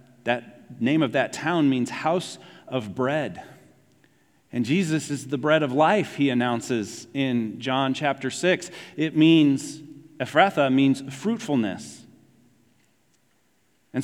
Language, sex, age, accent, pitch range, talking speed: English, male, 40-59, American, 125-160 Hz, 120 wpm